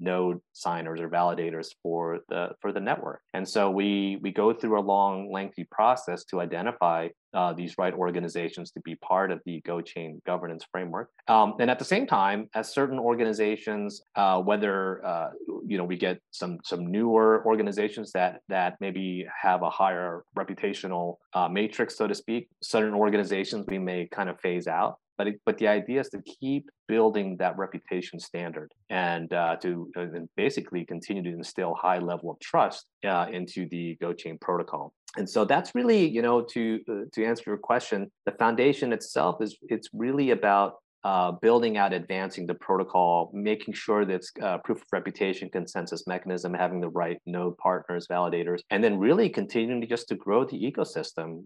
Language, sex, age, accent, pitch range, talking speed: English, male, 30-49, American, 90-105 Hz, 175 wpm